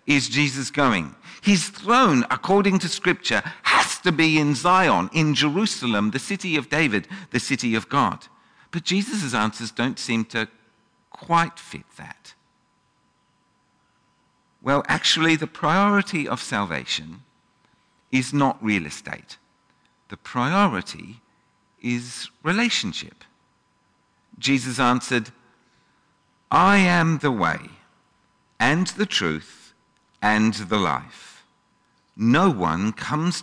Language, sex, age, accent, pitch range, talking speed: English, male, 50-69, British, 120-180 Hz, 110 wpm